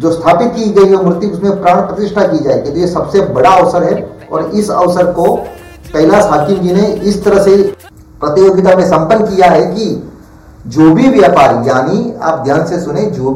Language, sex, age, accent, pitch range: Gujarati, male, 40-59, native, 145-185 Hz